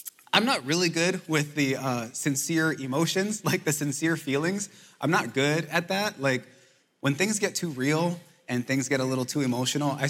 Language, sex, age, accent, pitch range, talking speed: English, male, 20-39, American, 130-175 Hz, 190 wpm